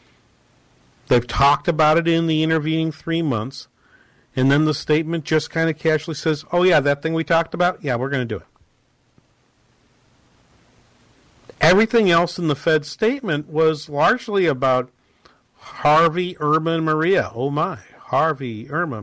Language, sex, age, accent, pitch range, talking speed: English, male, 50-69, American, 130-165 Hz, 150 wpm